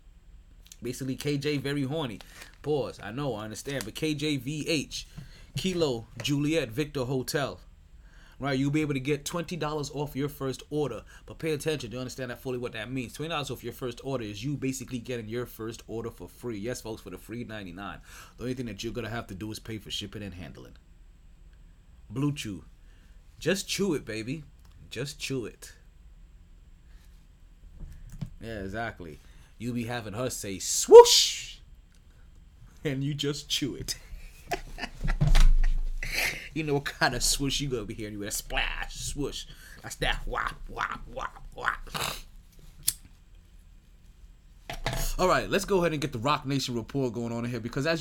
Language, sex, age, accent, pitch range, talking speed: English, male, 30-49, American, 90-145 Hz, 165 wpm